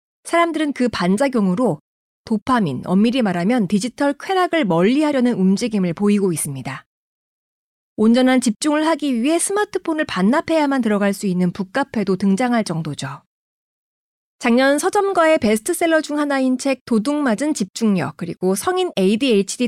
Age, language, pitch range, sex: 30-49, Korean, 200-295 Hz, female